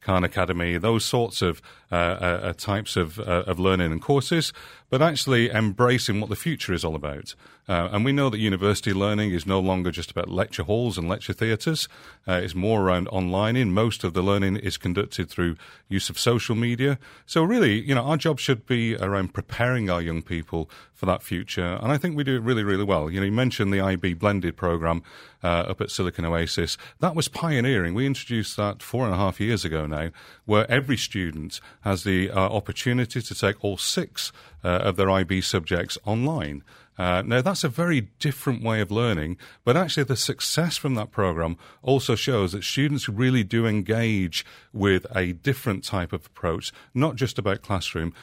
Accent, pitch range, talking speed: British, 90-125 Hz, 195 wpm